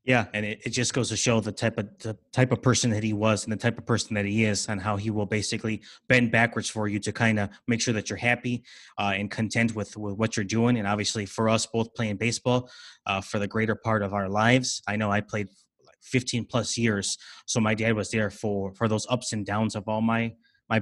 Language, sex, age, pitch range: English, male, 20-39, 105-120 Hz